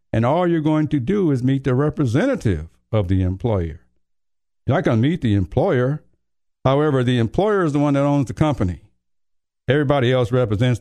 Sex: male